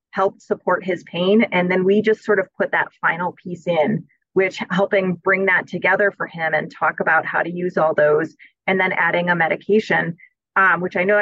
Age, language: 30-49, English